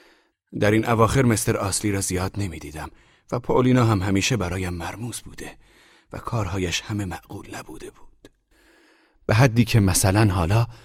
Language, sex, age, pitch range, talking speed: Persian, male, 40-59, 90-125 Hz, 145 wpm